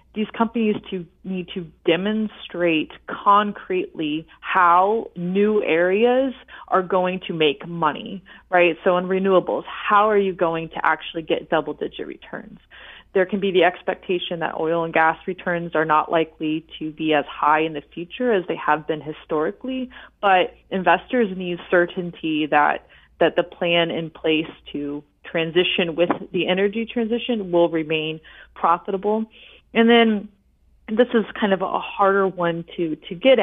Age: 20-39